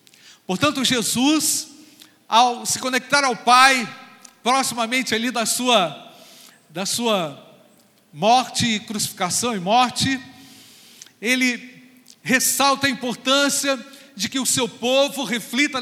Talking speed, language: 100 wpm, Portuguese